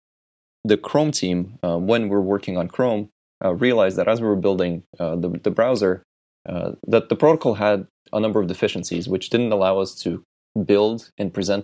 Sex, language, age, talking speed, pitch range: male, English, 20-39, 195 wpm, 90-110 Hz